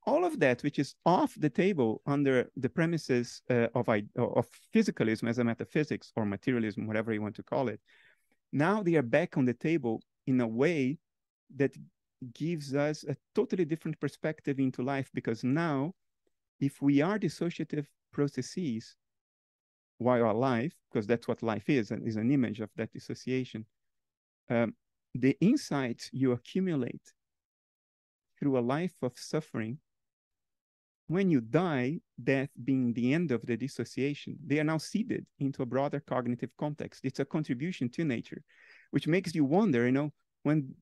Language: English